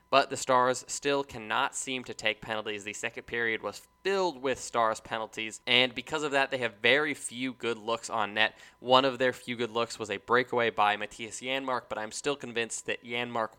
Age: 10-29